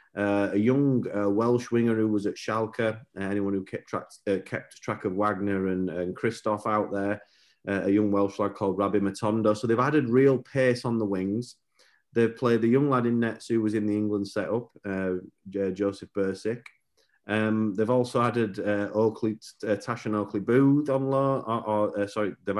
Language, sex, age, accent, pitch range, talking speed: English, male, 30-49, British, 100-120 Hz, 200 wpm